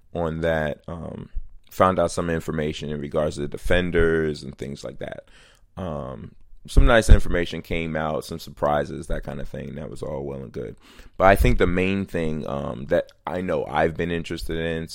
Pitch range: 75-90 Hz